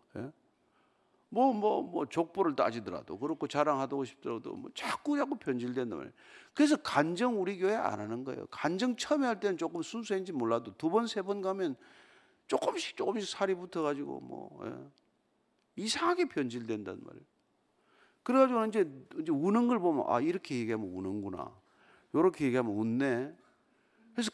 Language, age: Korean, 50-69